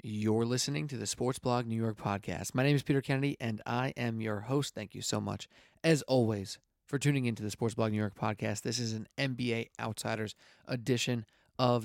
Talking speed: 210 wpm